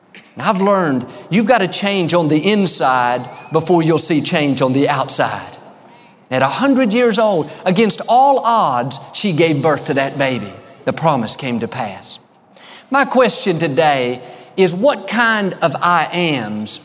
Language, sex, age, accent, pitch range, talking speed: English, male, 50-69, American, 140-200 Hz, 160 wpm